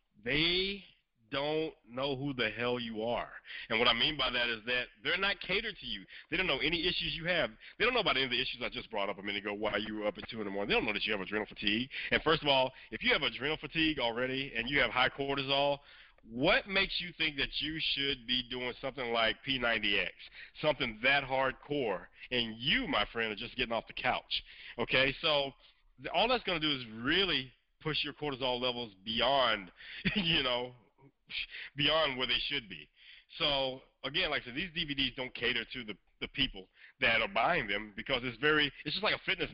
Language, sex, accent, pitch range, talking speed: English, male, American, 115-150 Hz, 225 wpm